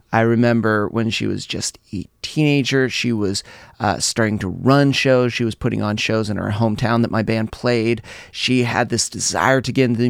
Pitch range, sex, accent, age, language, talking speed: 115-150 Hz, male, American, 30-49, English, 210 wpm